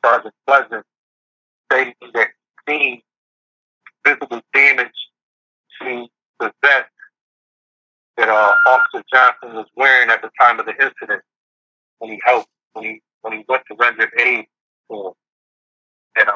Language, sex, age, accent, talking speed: English, male, 50-69, American, 135 wpm